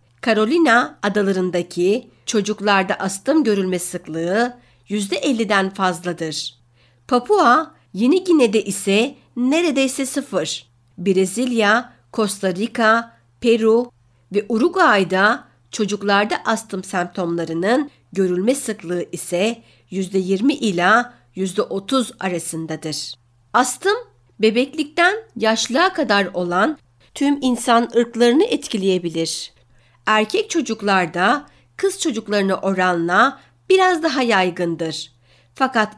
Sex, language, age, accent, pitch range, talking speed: female, Turkish, 60-79, native, 180-245 Hz, 80 wpm